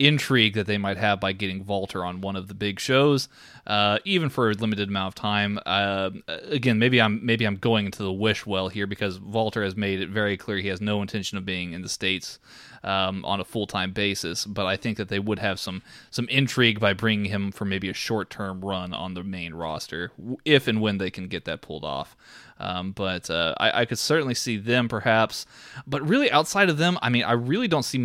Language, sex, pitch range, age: English, male, 95-115 Hz, 20-39